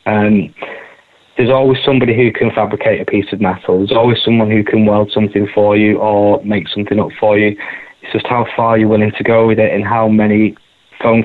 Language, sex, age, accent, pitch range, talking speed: English, male, 20-39, British, 105-115 Hz, 215 wpm